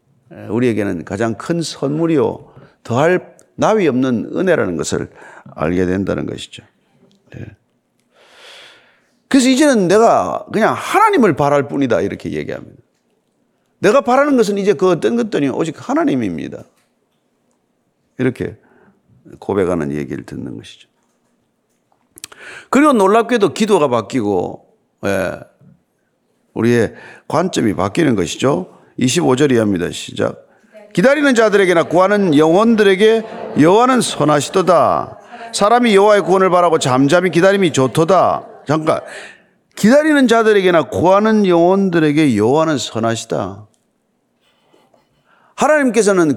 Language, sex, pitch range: Korean, male, 150-230 Hz